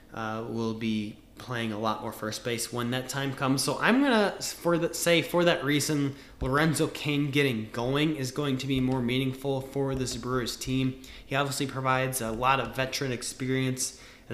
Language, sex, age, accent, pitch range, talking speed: English, male, 20-39, American, 125-150 Hz, 195 wpm